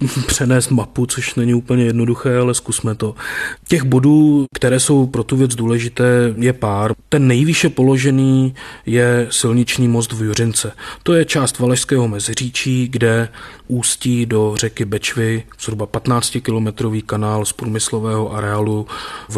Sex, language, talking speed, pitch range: male, Czech, 135 wpm, 110-130 Hz